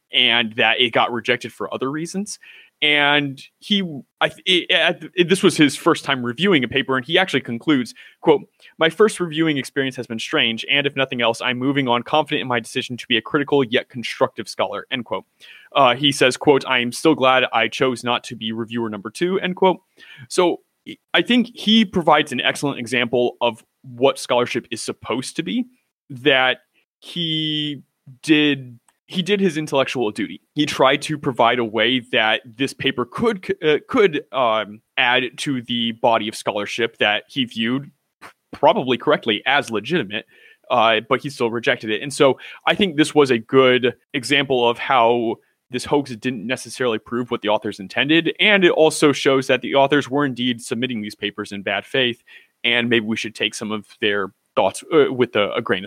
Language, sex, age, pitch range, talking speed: English, male, 20-39, 120-155 Hz, 185 wpm